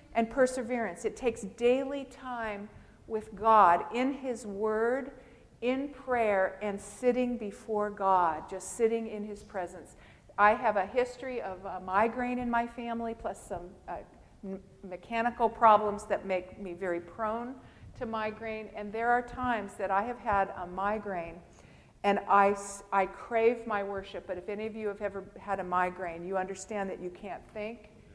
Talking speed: 165 wpm